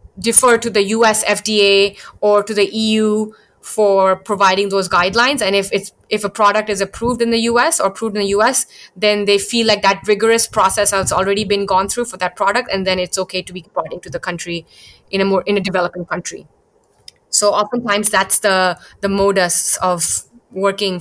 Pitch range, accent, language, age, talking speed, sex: 185-220 Hz, native, Hindi, 20-39, 200 wpm, female